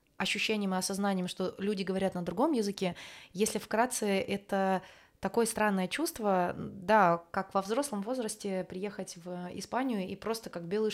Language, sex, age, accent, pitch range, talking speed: Russian, female, 20-39, native, 195-230 Hz, 150 wpm